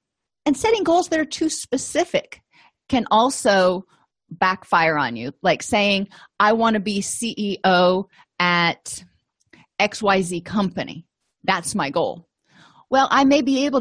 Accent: American